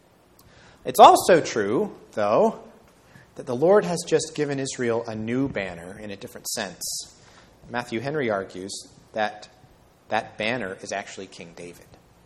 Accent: American